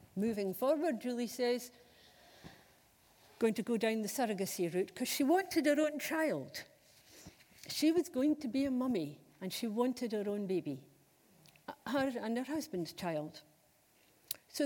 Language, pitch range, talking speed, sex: English, 210-285 Hz, 145 wpm, female